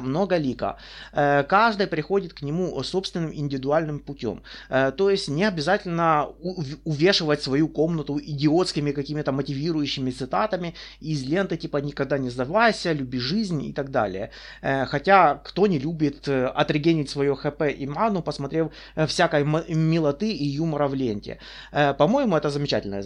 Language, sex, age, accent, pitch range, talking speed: Russian, male, 30-49, native, 145-195 Hz, 130 wpm